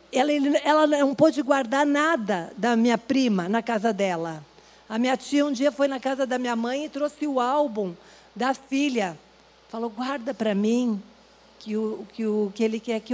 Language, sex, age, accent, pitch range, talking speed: Portuguese, female, 50-69, Brazilian, 210-270 Hz, 185 wpm